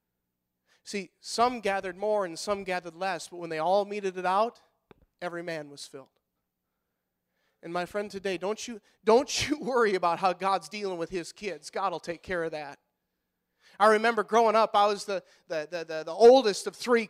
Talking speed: 195 wpm